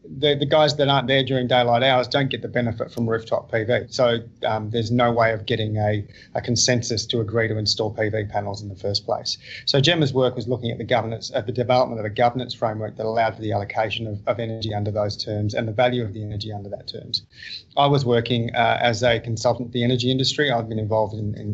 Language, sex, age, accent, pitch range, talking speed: English, male, 30-49, Australian, 110-130 Hz, 240 wpm